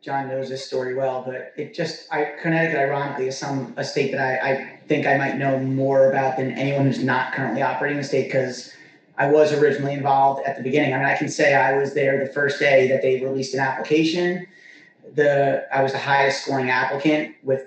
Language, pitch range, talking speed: English, 135-160 Hz, 215 wpm